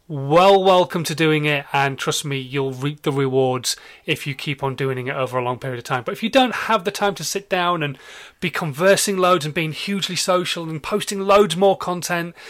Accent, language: British, English